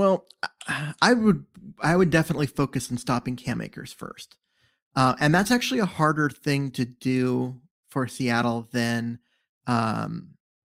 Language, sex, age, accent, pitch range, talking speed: English, male, 30-49, American, 125-145 Hz, 140 wpm